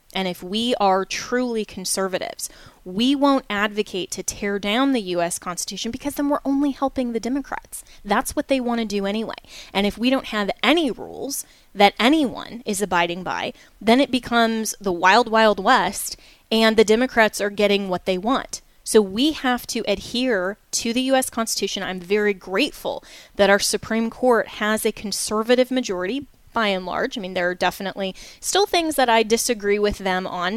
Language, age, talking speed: English, 20-39, 180 wpm